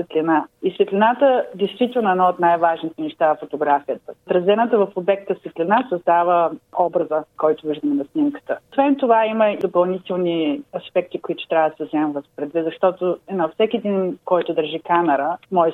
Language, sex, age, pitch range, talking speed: Bulgarian, female, 30-49, 165-215 Hz, 160 wpm